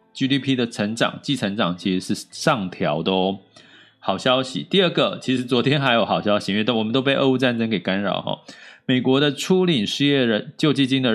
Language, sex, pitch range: Chinese, male, 105-145 Hz